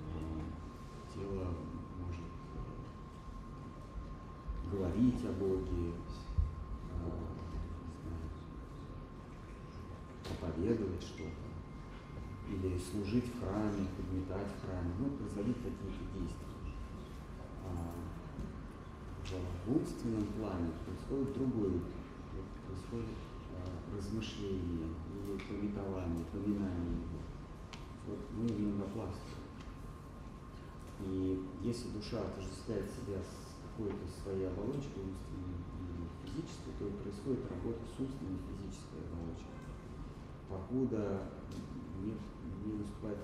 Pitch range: 80-105 Hz